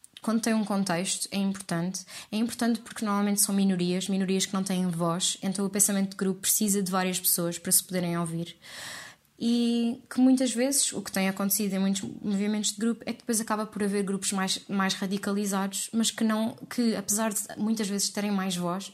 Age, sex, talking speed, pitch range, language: 20-39, female, 205 wpm, 190-220 Hz, Portuguese